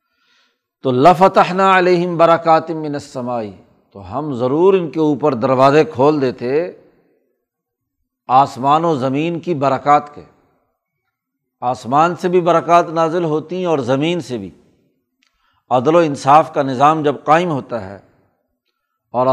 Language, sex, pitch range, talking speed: Urdu, male, 140-170 Hz, 125 wpm